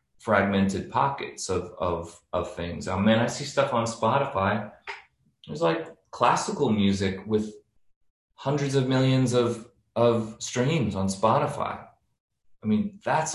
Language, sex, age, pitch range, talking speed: English, male, 30-49, 95-115 Hz, 130 wpm